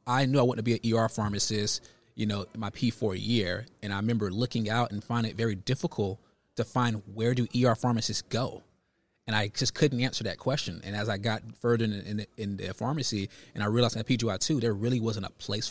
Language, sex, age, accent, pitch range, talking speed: English, male, 20-39, American, 105-125 Hz, 220 wpm